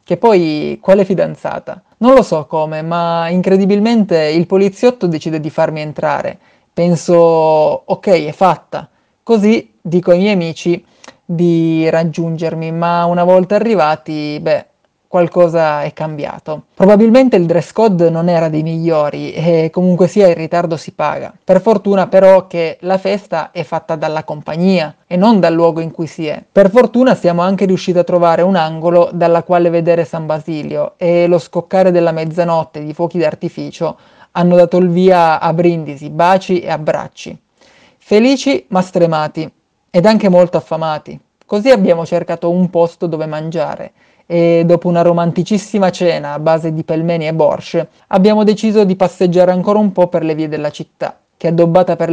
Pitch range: 160-185 Hz